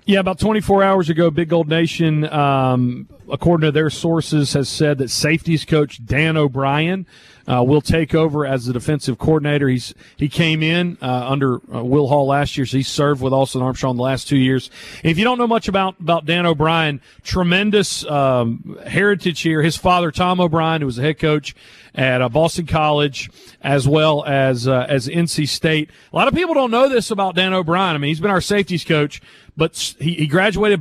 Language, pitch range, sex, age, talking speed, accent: English, 145-185 Hz, male, 40-59, 200 wpm, American